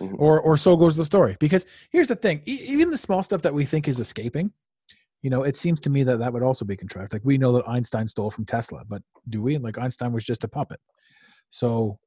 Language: English